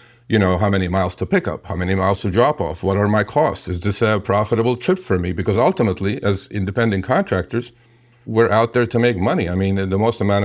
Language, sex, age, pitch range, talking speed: English, male, 50-69, 95-120 Hz, 235 wpm